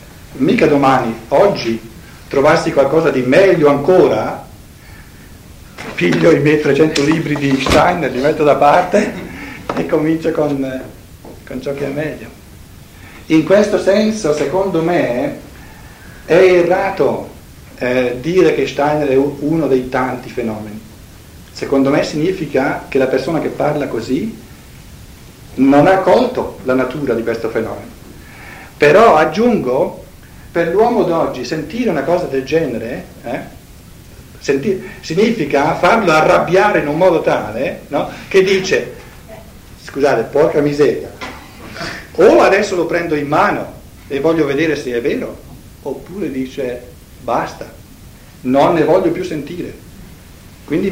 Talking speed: 125 wpm